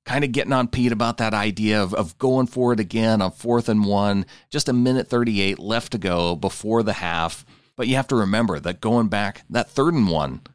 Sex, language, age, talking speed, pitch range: male, English, 40-59, 230 wpm, 95-120 Hz